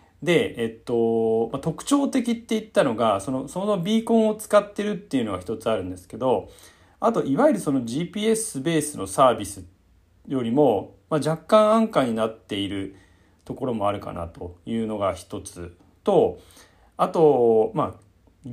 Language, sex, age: Japanese, male, 40-59